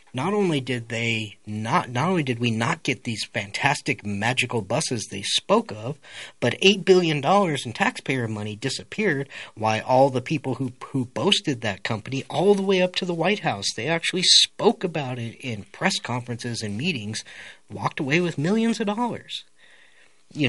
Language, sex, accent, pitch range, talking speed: English, male, American, 125-180 Hz, 175 wpm